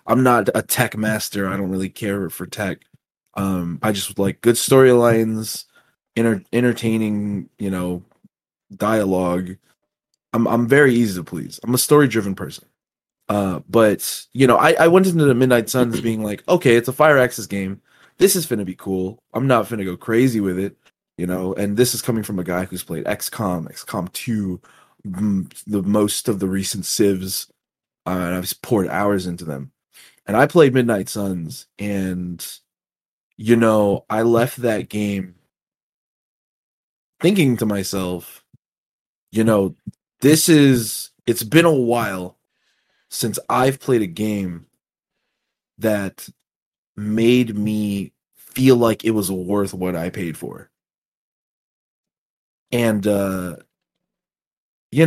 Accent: American